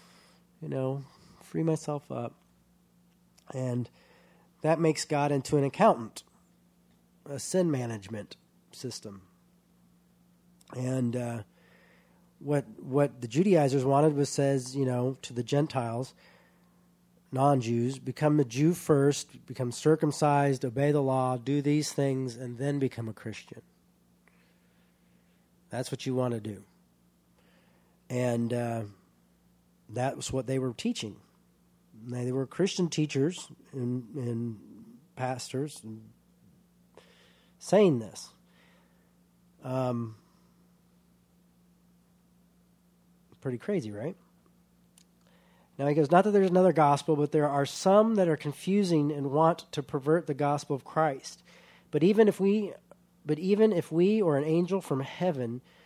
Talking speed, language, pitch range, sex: 120 wpm, English, 125-175 Hz, male